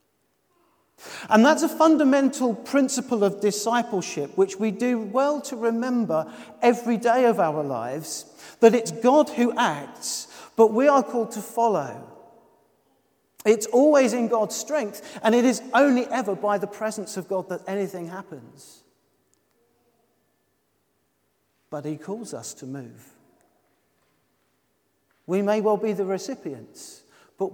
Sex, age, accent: male, 40-59, British